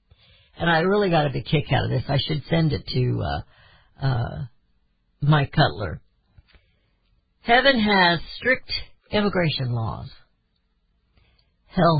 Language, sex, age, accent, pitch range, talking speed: English, female, 50-69, American, 115-175 Hz, 125 wpm